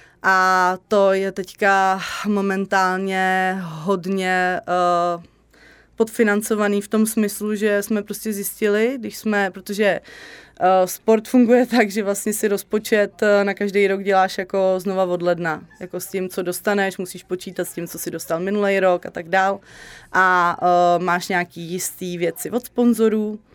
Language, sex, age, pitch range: Czech, female, 20-39, 180-205 Hz